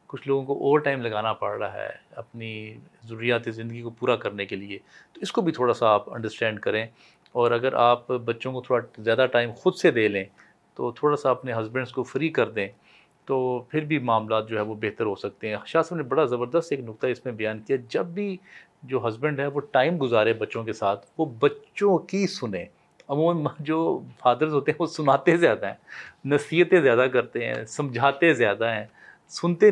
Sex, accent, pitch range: male, Indian, 115-145 Hz